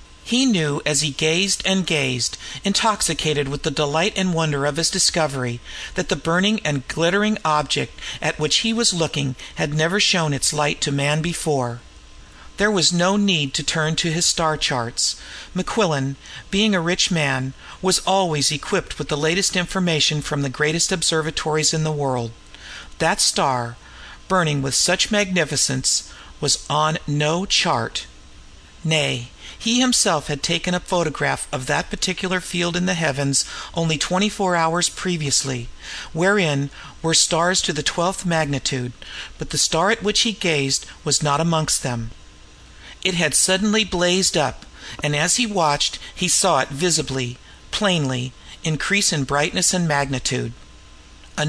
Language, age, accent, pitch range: English, 50-69, American, 135-180 Hz